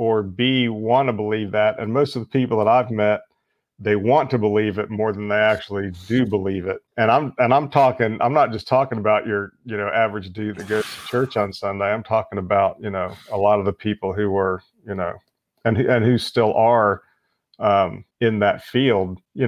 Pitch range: 105-125 Hz